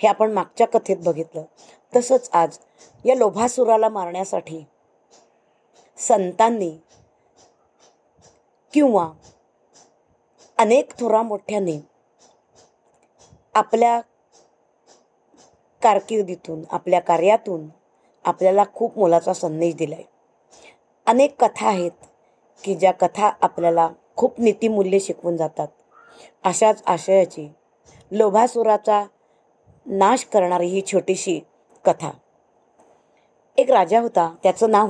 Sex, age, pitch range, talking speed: female, 20-39, 170-220 Hz, 85 wpm